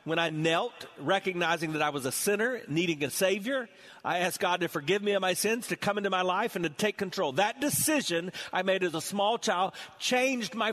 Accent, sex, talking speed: American, male, 225 wpm